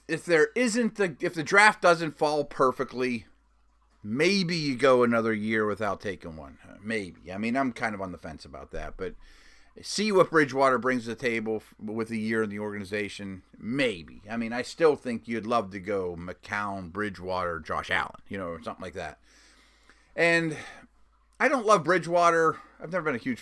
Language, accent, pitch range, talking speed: English, American, 95-145 Hz, 190 wpm